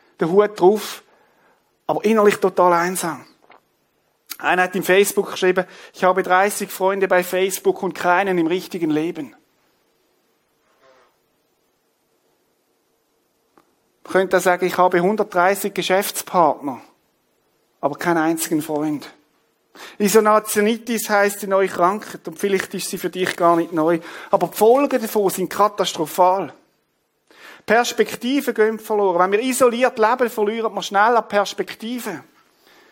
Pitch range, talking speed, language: 185-230 Hz, 115 wpm, German